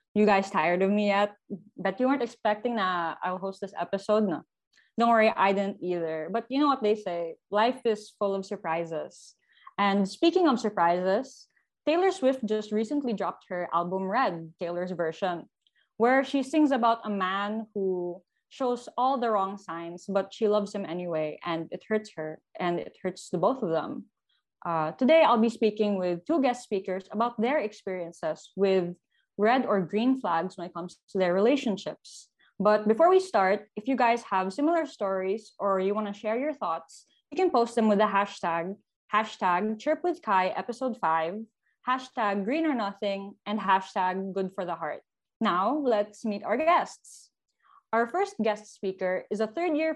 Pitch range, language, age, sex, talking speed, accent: 185-235 Hz, Filipino, 20-39, female, 170 wpm, native